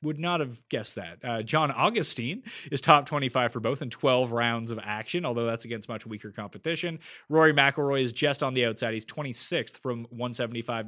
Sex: male